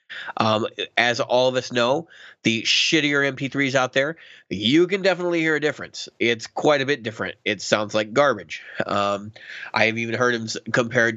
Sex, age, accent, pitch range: male, 30-49, American, 115-145 Hz